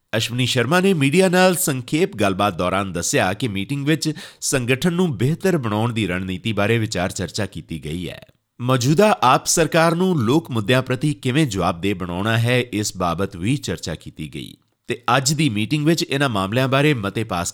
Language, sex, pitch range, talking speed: Punjabi, male, 100-150 Hz, 170 wpm